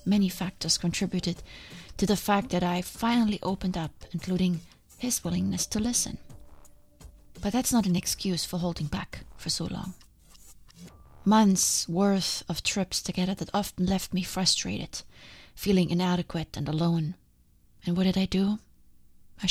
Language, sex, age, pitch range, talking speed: English, female, 30-49, 175-205 Hz, 145 wpm